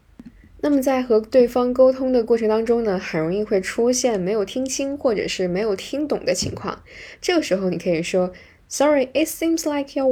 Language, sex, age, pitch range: Chinese, female, 10-29, 195-270 Hz